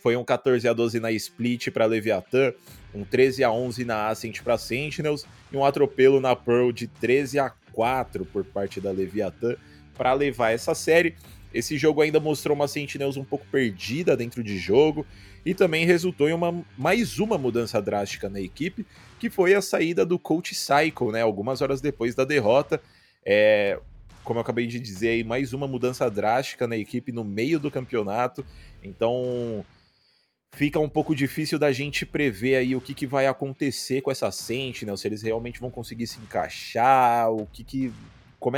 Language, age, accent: Portuguese, 20-39, Brazilian